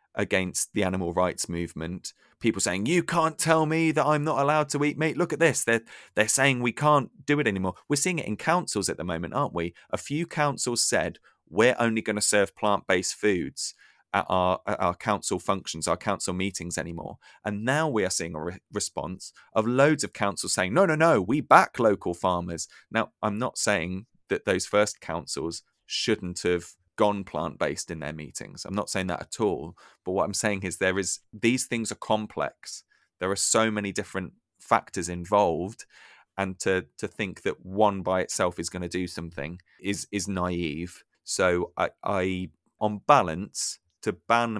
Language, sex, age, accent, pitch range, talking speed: English, male, 30-49, British, 90-115 Hz, 190 wpm